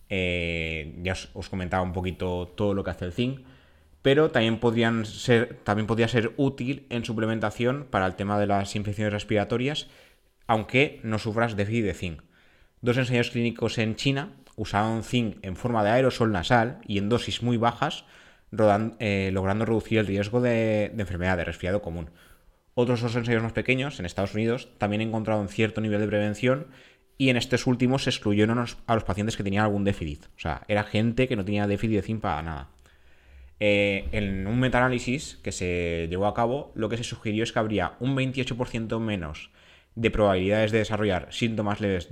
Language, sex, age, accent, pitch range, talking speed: Spanish, male, 20-39, Spanish, 95-120 Hz, 180 wpm